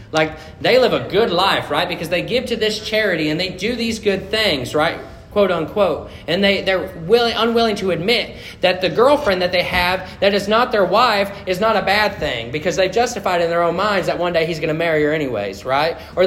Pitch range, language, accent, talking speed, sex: 140-195 Hz, English, American, 230 wpm, male